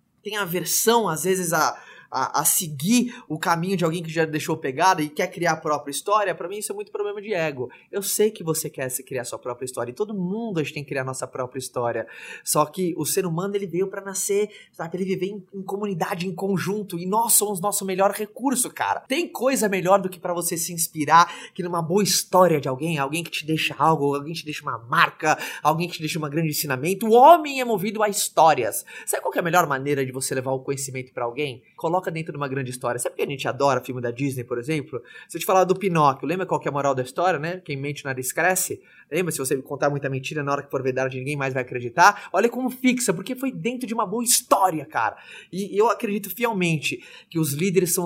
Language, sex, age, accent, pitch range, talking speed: Portuguese, male, 20-39, Brazilian, 145-200 Hz, 250 wpm